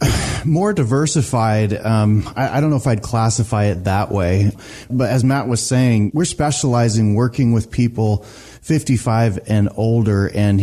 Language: English